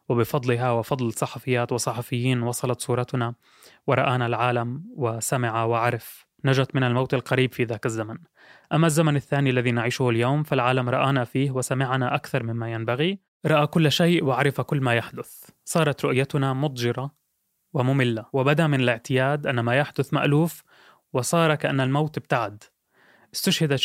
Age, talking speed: 20-39, 135 wpm